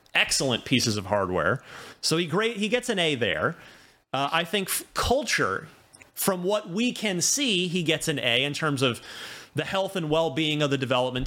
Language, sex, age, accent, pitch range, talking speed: English, male, 30-49, American, 120-170 Hz, 190 wpm